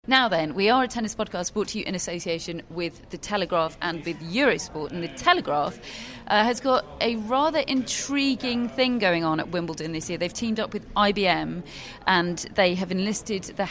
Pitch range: 160-210 Hz